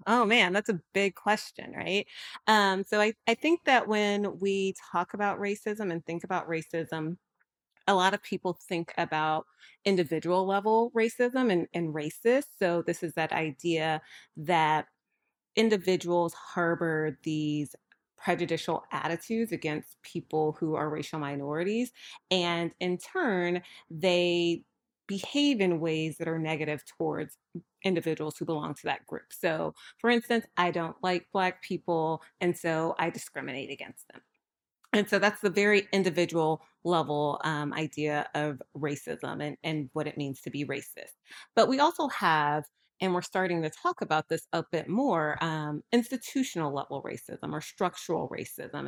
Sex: female